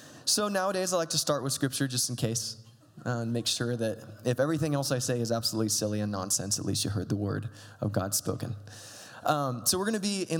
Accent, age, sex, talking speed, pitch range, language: American, 20-39, male, 240 wpm, 110-135 Hz, English